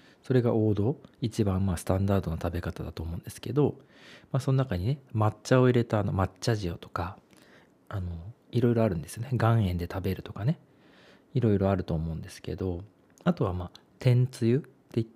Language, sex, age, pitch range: Japanese, male, 40-59, 90-125 Hz